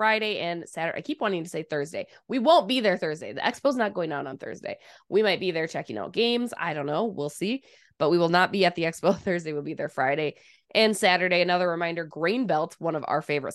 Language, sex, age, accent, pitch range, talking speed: English, female, 20-39, American, 155-215 Hz, 255 wpm